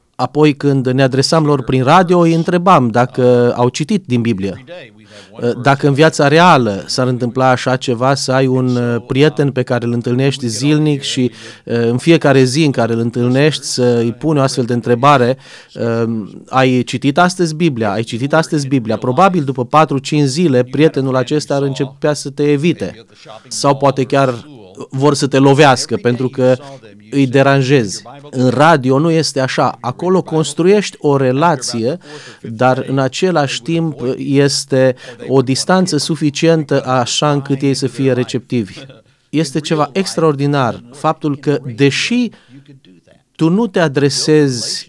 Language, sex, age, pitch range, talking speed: Romanian, male, 30-49, 125-150 Hz, 145 wpm